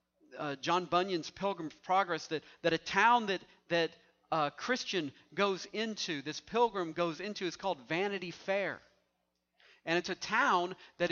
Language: English